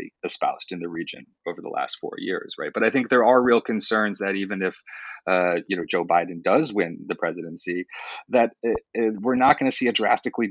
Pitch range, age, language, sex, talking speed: 90-115 Hz, 30-49, English, male, 225 wpm